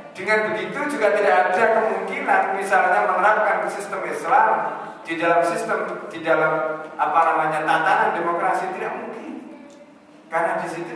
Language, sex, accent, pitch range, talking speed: Indonesian, male, native, 155-220 Hz, 125 wpm